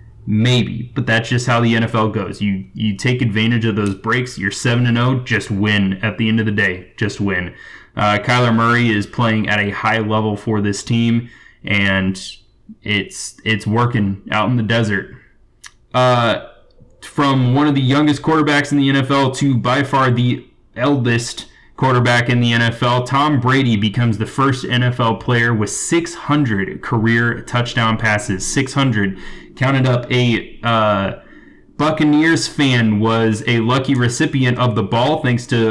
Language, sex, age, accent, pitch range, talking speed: English, male, 20-39, American, 110-130 Hz, 160 wpm